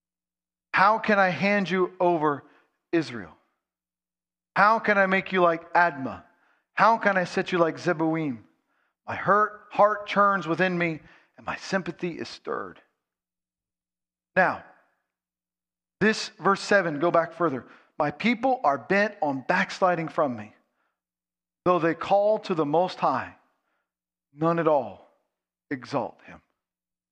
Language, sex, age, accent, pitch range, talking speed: English, male, 40-59, American, 140-190 Hz, 130 wpm